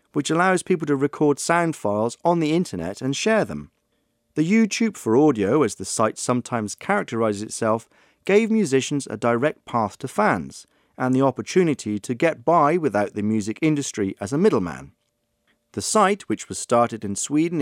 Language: Czech